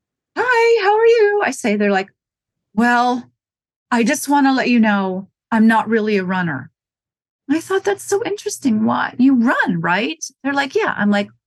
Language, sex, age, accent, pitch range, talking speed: English, female, 30-49, American, 175-240 Hz, 185 wpm